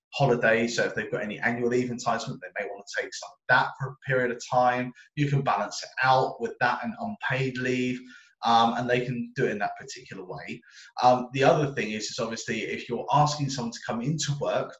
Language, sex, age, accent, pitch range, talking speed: English, male, 20-39, British, 120-145 Hz, 230 wpm